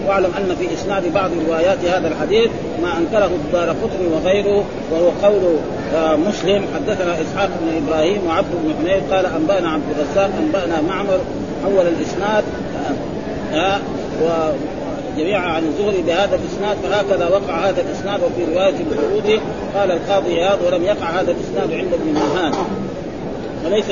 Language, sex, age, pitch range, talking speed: Arabic, male, 40-59, 165-200 Hz, 145 wpm